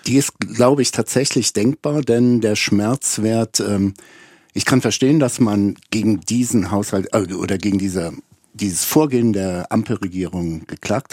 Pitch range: 95-115 Hz